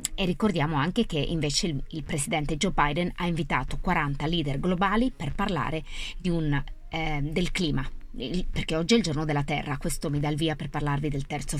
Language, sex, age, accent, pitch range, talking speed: Italian, female, 20-39, native, 150-190 Hz, 200 wpm